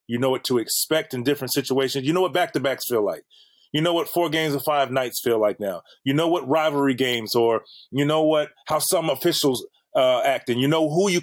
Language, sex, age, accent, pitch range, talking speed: English, male, 30-49, American, 130-165 Hz, 235 wpm